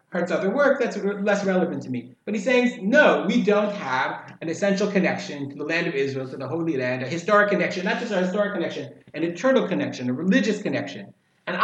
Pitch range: 165-210 Hz